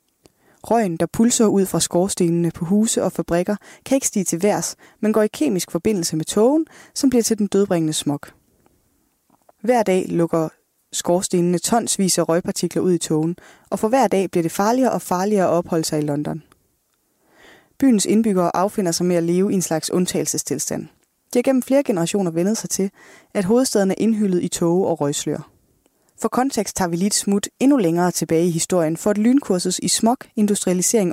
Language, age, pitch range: Danish, 20-39, 170-215 Hz